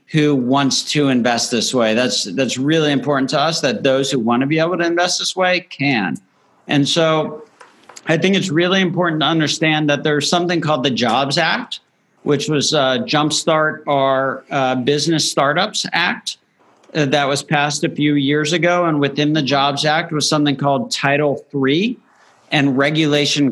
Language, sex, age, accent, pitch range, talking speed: English, male, 50-69, American, 135-155 Hz, 175 wpm